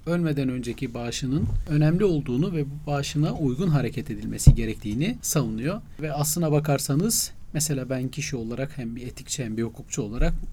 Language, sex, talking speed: Turkish, male, 155 wpm